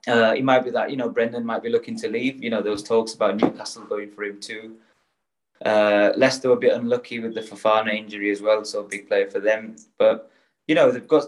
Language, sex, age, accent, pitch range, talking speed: English, male, 20-39, British, 110-155 Hz, 250 wpm